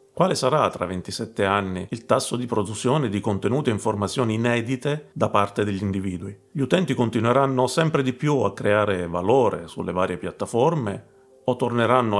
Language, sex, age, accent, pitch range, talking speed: Italian, male, 40-59, native, 95-135 Hz, 155 wpm